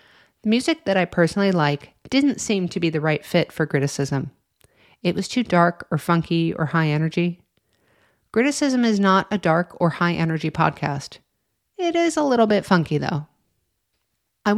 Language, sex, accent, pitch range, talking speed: English, female, American, 160-210 Hz, 170 wpm